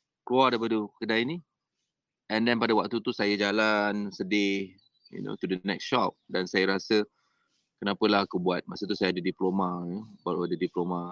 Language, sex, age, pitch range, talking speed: Malay, male, 20-39, 90-115 Hz, 180 wpm